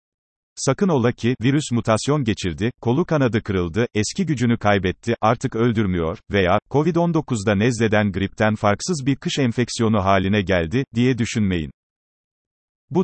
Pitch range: 100-135 Hz